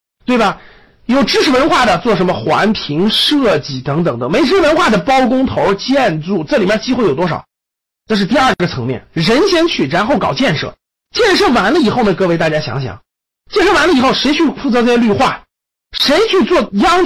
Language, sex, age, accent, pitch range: Chinese, male, 50-69, native, 195-295 Hz